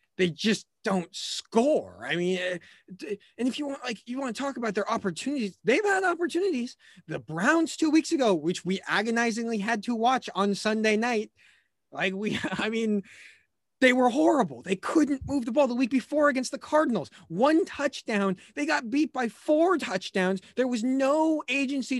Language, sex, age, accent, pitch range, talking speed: English, male, 20-39, American, 195-300 Hz, 175 wpm